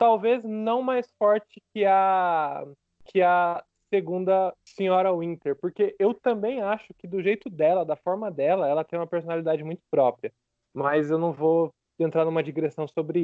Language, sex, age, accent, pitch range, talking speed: Portuguese, male, 20-39, Brazilian, 160-225 Hz, 165 wpm